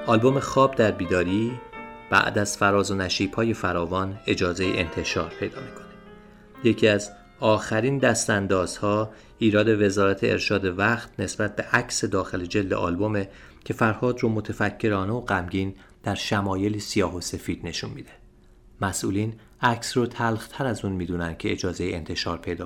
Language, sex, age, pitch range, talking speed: Persian, male, 30-49, 95-120 Hz, 140 wpm